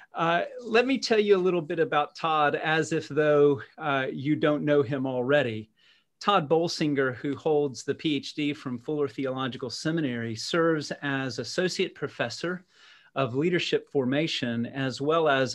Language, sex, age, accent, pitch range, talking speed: English, male, 40-59, American, 130-160 Hz, 150 wpm